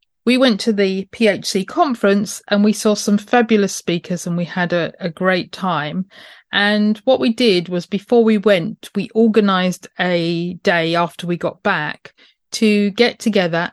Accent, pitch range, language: British, 185-225 Hz, English